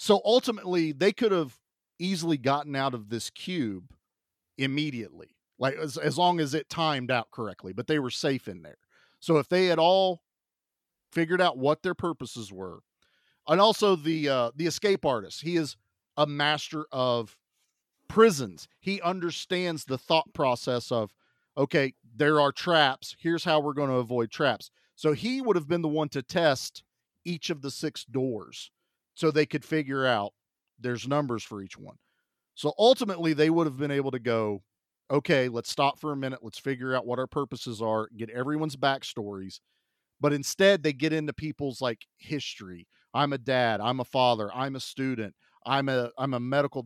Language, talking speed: English, 180 wpm